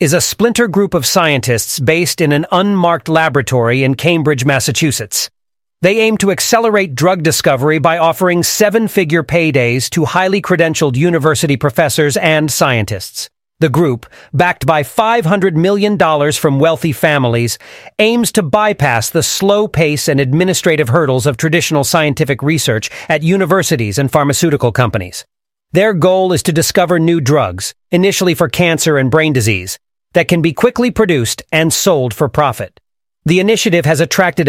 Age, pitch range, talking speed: 40-59, 140-180 Hz, 145 wpm